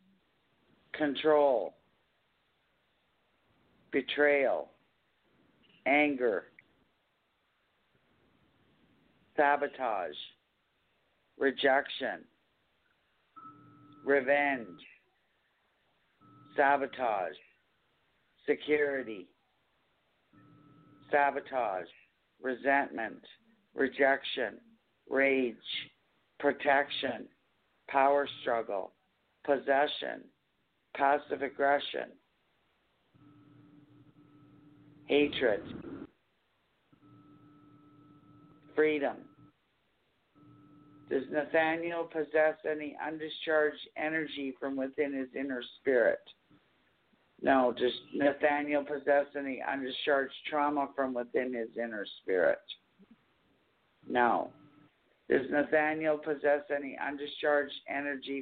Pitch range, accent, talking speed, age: 140-150 Hz, American, 50 wpm, 60-79